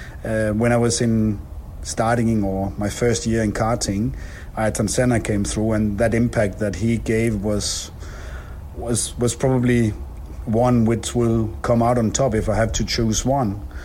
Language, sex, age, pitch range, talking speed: Swedish, male, 50-69, 100-115 Hz, 170 wpm